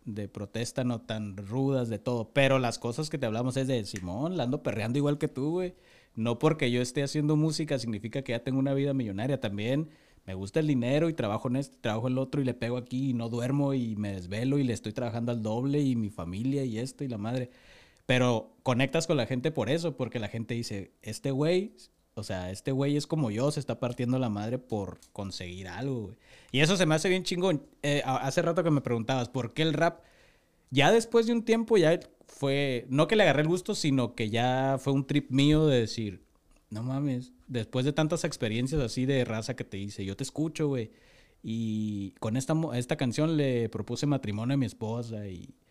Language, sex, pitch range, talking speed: Spanish, male, 110-145 Hz, 220 wpm